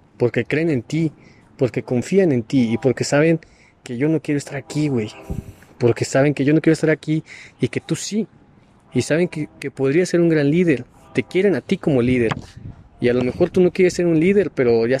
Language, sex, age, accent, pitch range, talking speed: Spanish, male, 30-49, Mexican, 120-155 Hz, 230 wpm